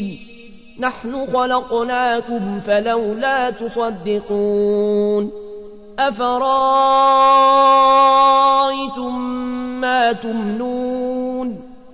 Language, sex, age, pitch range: Arabic, male, 30-49, 230-255 Hz